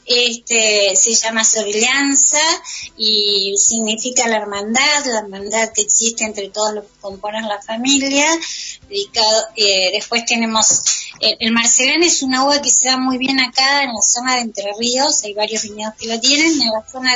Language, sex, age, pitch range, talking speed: Spanish, female, 20-39, 215-260 Hz, 175 wpm